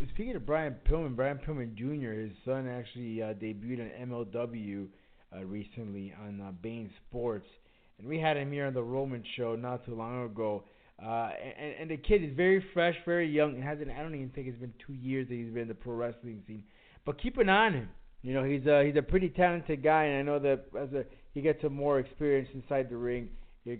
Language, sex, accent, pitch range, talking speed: English, male, American, 125-175 Hz, 225 wpm